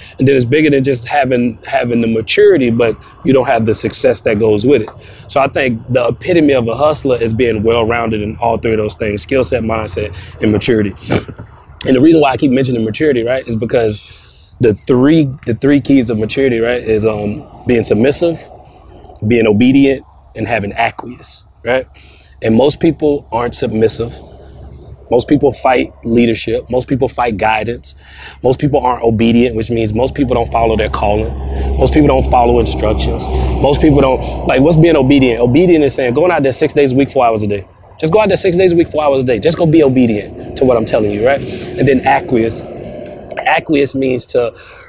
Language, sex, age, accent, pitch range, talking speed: English, male, 30-49, American, 110-140 Hz, 200 wpm